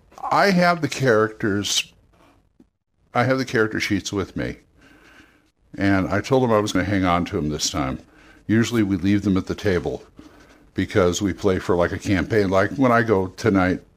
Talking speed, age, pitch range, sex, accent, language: 190 wpm, 60-79, 90-115 Hz, male, American, English